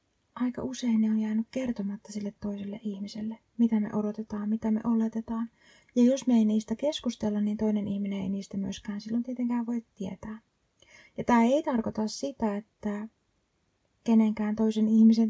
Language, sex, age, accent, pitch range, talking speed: Finnish, female, 30-49, native, 210-240 Hz, 155 wpm